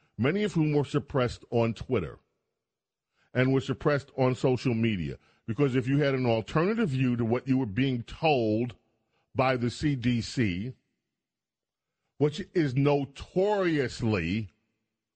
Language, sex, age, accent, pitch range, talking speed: English, male, 40-59, American, 115-145 Hz, 125 wpm